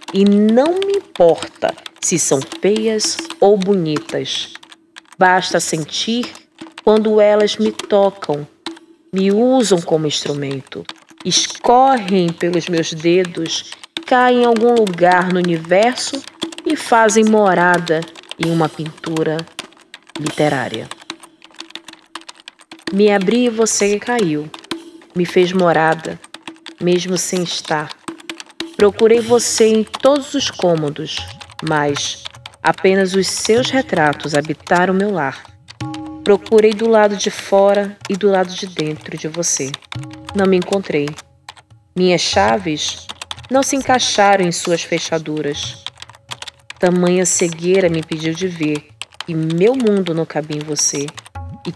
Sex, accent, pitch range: female, Brazilian, 160-220 Hz